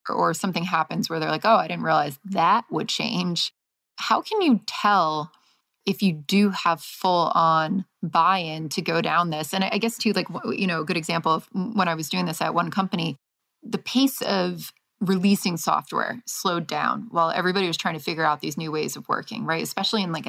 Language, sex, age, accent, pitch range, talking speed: English, female, 20-39, American, 165-215 Hz, 205 wpm